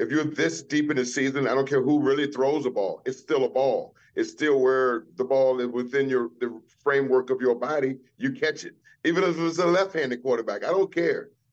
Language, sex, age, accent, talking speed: English, male, 40-59, American, 230 wpm